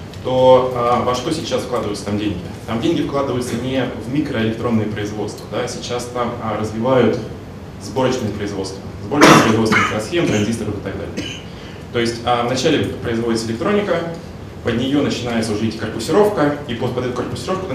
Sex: male